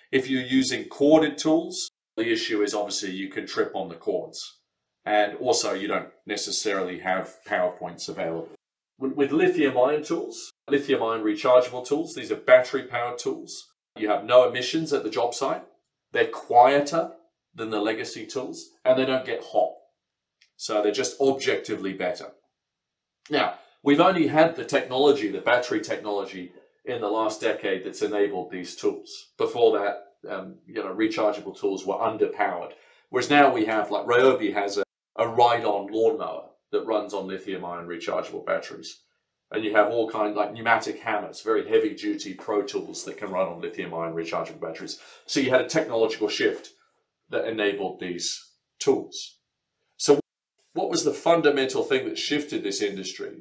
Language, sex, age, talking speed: English, male, 40-59, 165 wpm